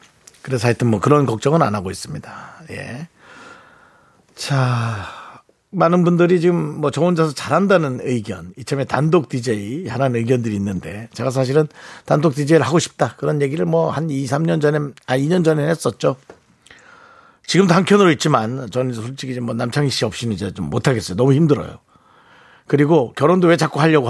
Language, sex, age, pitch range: Korean, male, 50-69, 120-165 Hz